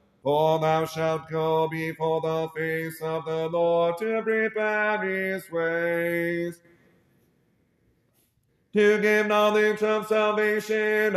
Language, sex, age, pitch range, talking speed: English, male, 30-49, 160-215 Hz, 100 wpm